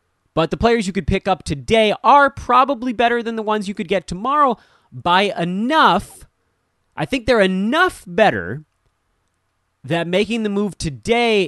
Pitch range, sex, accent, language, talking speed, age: 145-225 Hz, male, American, English, 150 wpm, 30-49